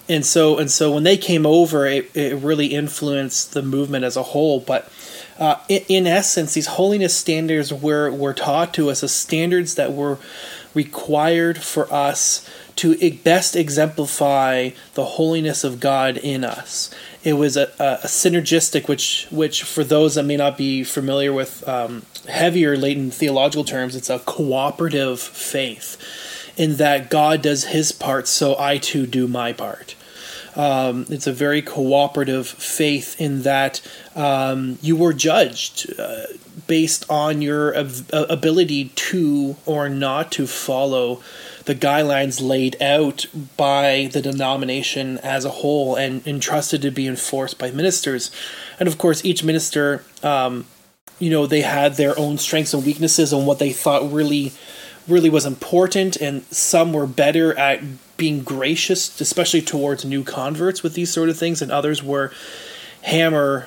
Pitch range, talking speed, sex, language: 135-160 Hz, 155 wpm, male, English